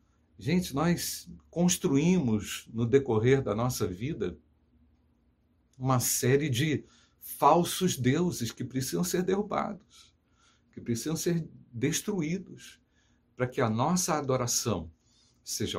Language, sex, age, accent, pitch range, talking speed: Portuguese, male, 60-79, Brazilian, 95-140 Hz, 105 wpm